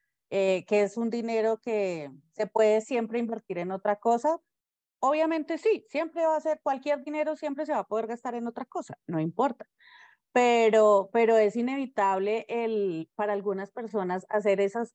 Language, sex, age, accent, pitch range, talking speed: Spanish, female, 30-49, Colombian, 195-245 Hz, 170 wpm